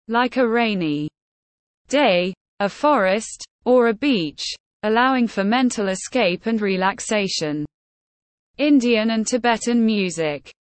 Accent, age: British, 20-39